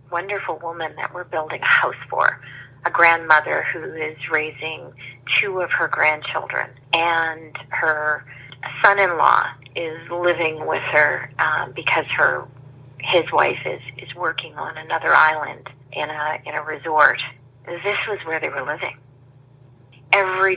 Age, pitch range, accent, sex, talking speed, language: 40-59, 135-175 Hz, American, female, 135 wpm, English